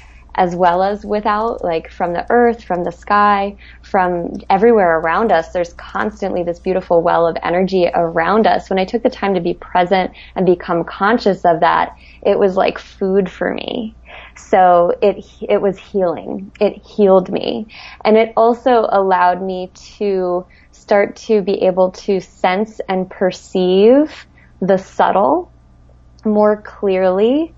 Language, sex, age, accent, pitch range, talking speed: English, female, 20-39, American, 180-215 Hz, 150 wpm